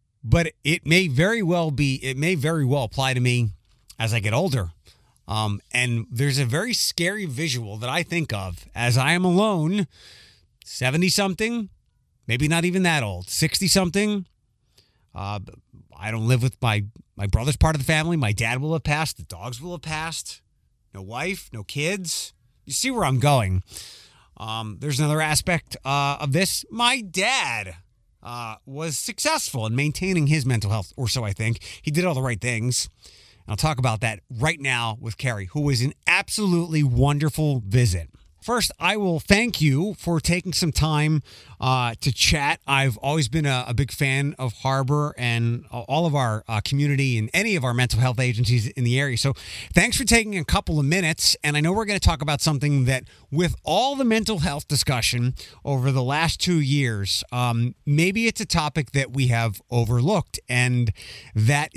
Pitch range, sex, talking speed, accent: 115-160 Hz, male, 185 wpm, American